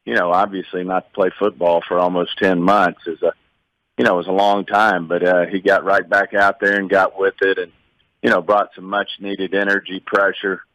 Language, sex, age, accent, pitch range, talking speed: English, male, 40-59, American, 90-95 Hz, 225 wpm